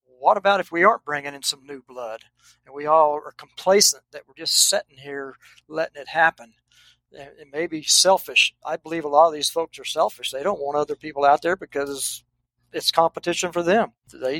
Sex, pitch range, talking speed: male, 140-175 Hz, 205 wpm